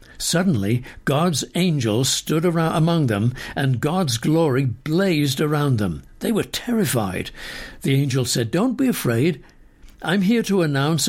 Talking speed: 140 wpm